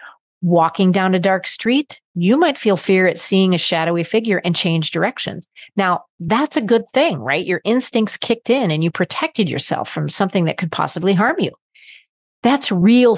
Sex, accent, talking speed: female, American, 180 wpm